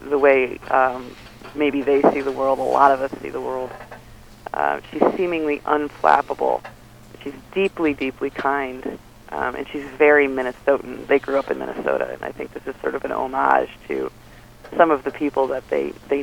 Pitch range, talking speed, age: 125-145 Hz, 185 wpm, 40-59